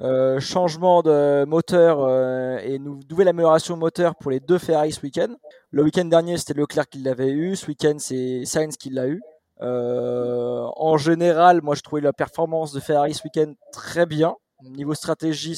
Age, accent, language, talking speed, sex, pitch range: 20-39, French, French, 180 wpm, male, 140-165 Hz